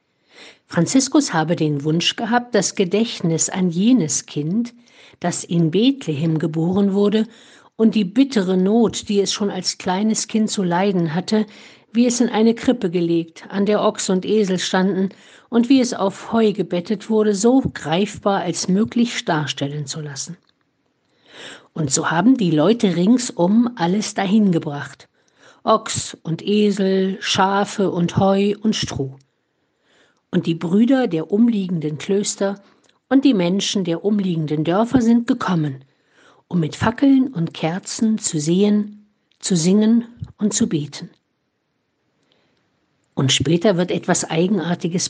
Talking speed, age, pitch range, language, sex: 135 wpm, 50-69, 170-220 Hz, German, female